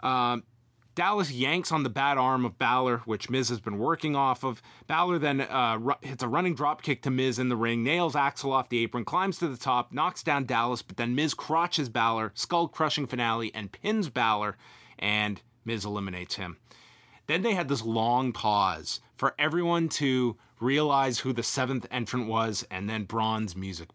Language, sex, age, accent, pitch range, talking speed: English, male, 30-49, American, 115-140 Hz, 195 wpm